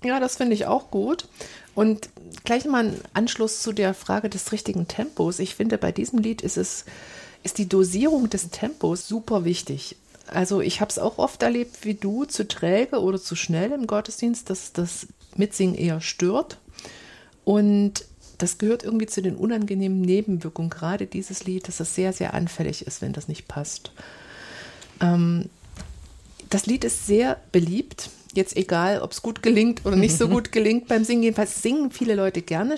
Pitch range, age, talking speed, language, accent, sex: 185-225 Hz, 50-69, 180 wpm, German, German, female